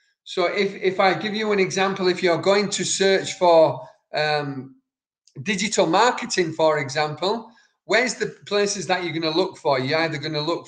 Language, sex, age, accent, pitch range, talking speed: English, male, 40-59, British, 160-205 Hz, 185 wpm